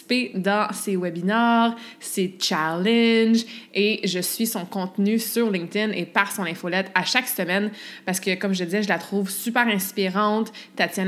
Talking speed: 165 wpm